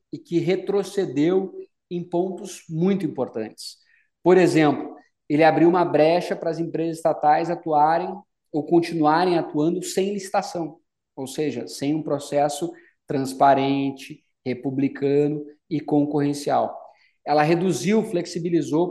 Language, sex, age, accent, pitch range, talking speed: Portuguese, male, 20-39, Brazilian, 150-175 Hz, 110 wpm